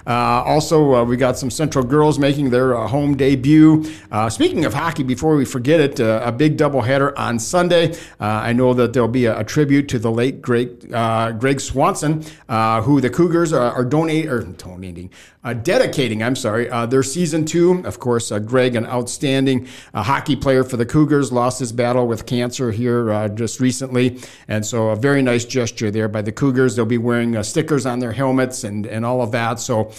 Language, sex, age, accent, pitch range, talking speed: English, male, 50-69, American, 120-150 Hz, 210 wpm